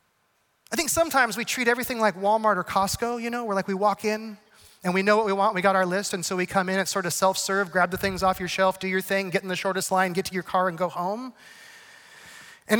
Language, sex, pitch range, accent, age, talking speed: English, male, 190-240 Hz, American, 30-49, 270 wpm